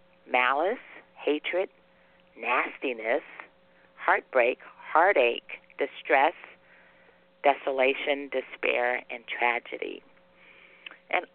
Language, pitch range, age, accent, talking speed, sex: English, 125-150 Hz, 40-59, American, 60 wpm, female